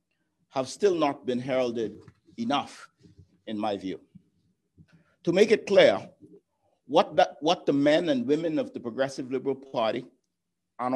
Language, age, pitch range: English, 50-69, 130-175 Hz